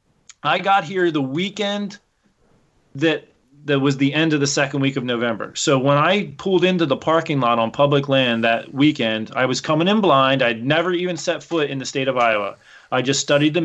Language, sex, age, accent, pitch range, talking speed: English, male, 30-49, American, 130-160 Hz, 210 wpm